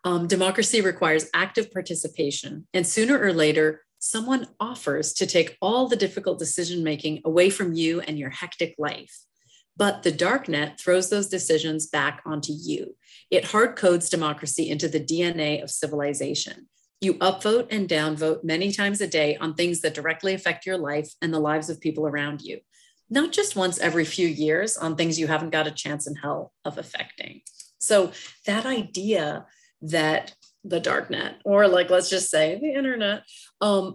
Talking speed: 175 wpm